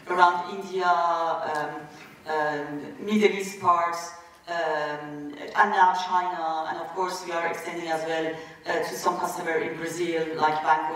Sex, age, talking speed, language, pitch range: female, 40-59, 150 wpm, English, 155-185 Hz